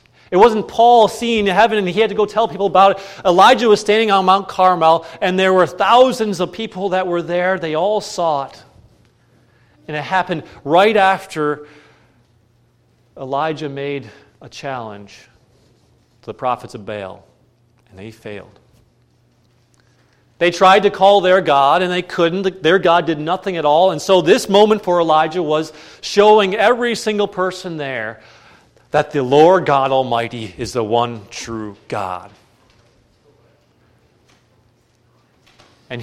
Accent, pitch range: American, 120-185 Hz